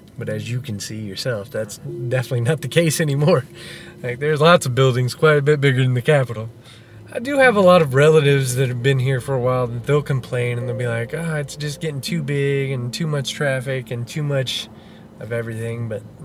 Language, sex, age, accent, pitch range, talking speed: English, male, 20-39, American, 115-135 Hz, 230 wpm